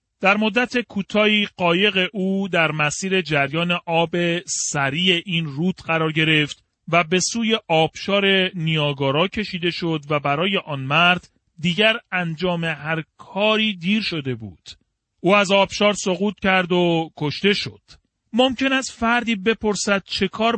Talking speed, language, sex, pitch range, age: 135 wpm, Persian, male, 155-210 Hz, 40-59